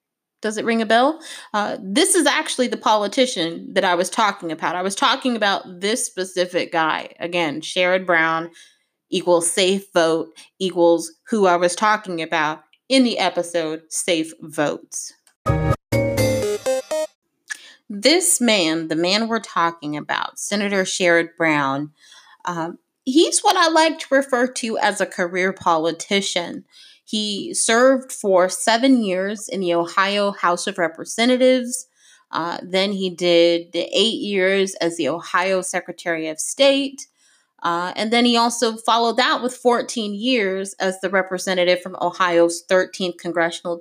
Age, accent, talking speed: 30-49, American, 140 wpm